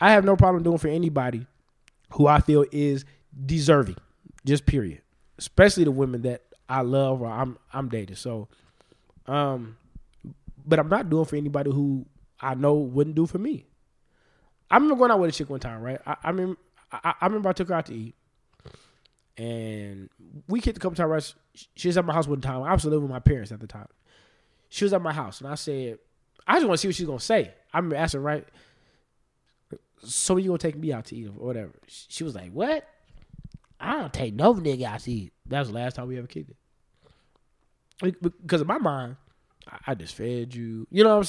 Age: 20-39